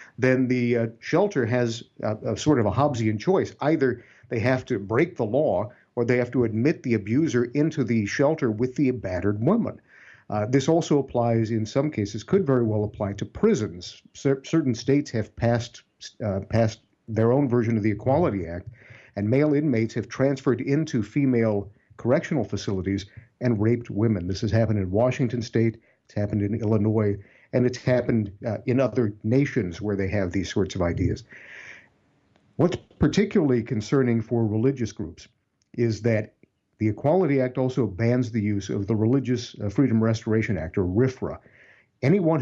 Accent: American